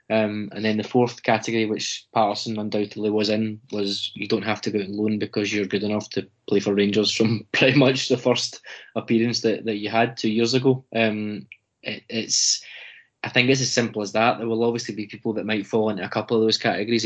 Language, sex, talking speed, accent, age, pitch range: English, male, 225 wpm, British, 20-39, 105-120 Hz